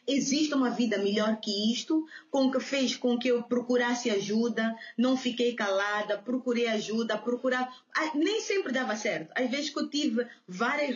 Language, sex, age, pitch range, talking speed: Portuguese, female, 20-39, 215-265 Hz, 165 wpm